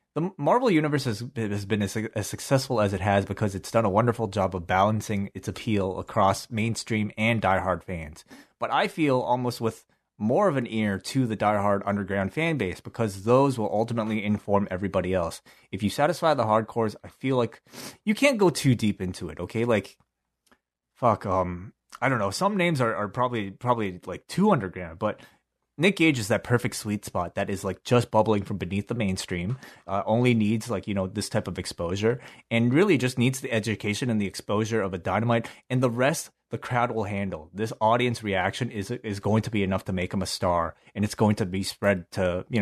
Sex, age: male, 30-49